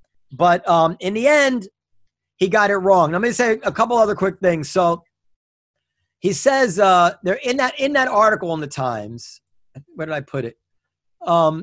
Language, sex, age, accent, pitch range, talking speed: English, male, 40-59, American, 165-220 Hz, 185 wpm